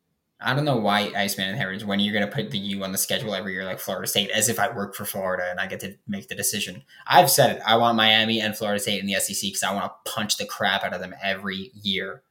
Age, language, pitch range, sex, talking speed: 10-29, English, 105-125 Hz, male, 290 wpm